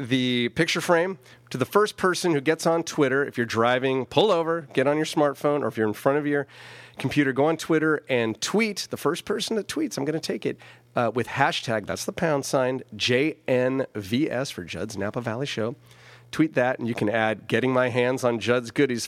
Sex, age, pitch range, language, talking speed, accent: male, 30-49, 105-145 Hz, English, 215 wpm, American